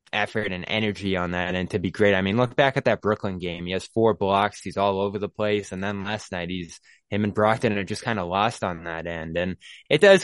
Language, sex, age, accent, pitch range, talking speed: English, male, 20-39, American, 95-120 Hz, 265 wpm